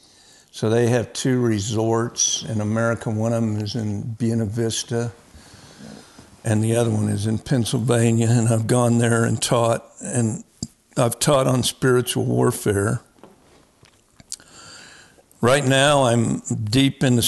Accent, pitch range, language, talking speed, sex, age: American, 110-120 Hz, English, 130 wpm, male, 60-79